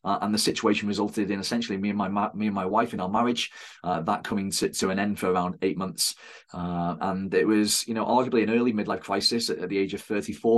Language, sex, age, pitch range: English, male, 30-49, 95-115 Hz